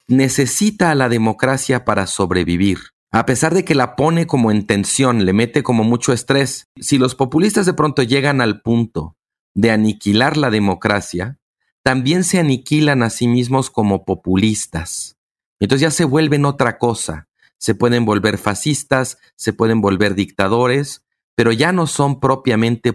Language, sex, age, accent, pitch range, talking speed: Spanish, male, 40-59, Mexican, 105-140 Hz, 155 wpm